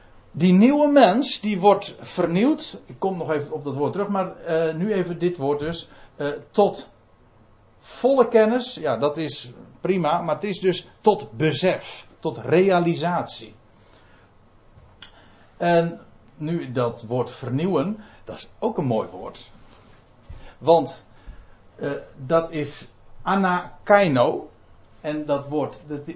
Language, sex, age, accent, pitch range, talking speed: Dutch, male, 60-79, Dutch, 115-180 Hz, 130 wpm